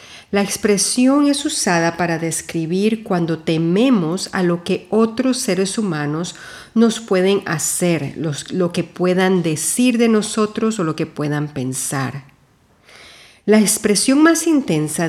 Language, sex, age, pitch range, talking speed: Spanish, female, 40-59, 155-205 Hz, 130 wpm